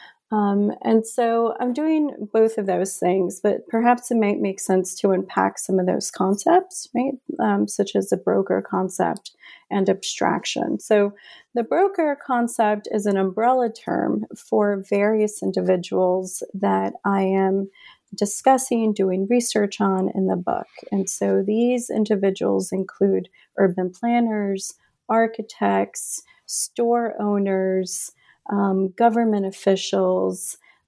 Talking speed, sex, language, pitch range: 125 wpm, female, English, 190-235 Hz